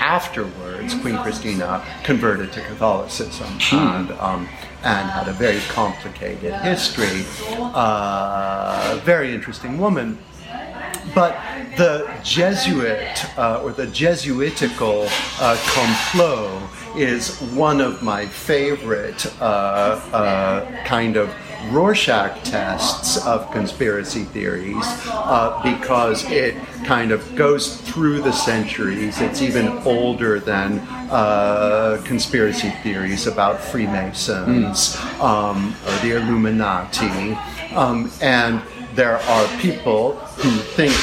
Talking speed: 105 wpm